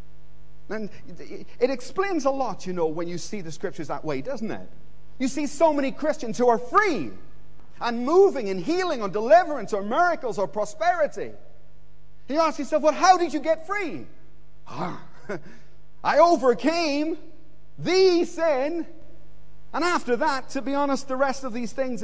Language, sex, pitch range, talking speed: English, male, 160-255 Hz, 160 wpm